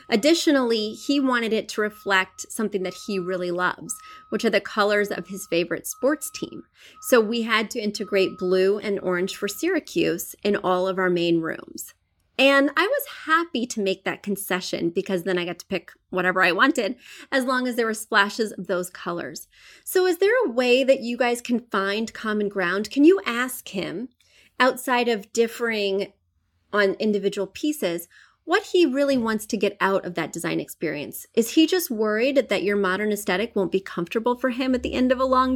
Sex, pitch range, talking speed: female, 190-255 Hz, 190 wpm